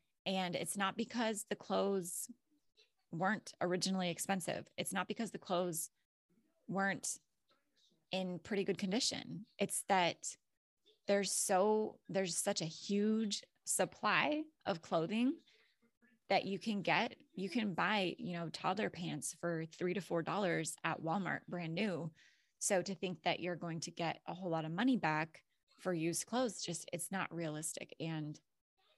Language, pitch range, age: English, 165-200 Hz, 20-39